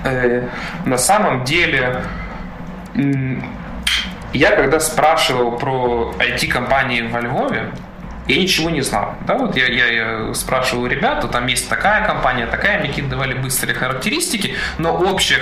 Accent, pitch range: native, 120-155 Hz